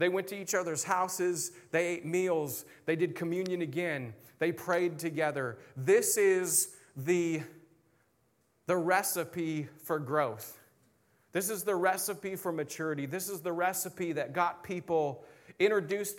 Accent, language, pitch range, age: American, English, 150-180 Hz, 30-49